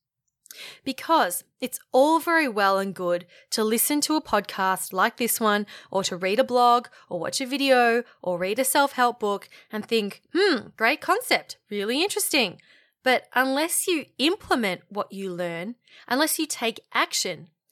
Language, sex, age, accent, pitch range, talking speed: English, female, 20-39, Australian, 190-265 Hz, 160 wpm